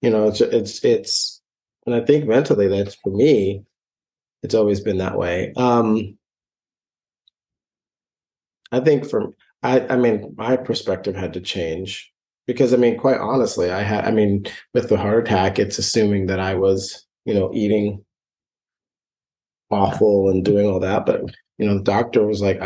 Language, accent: English, American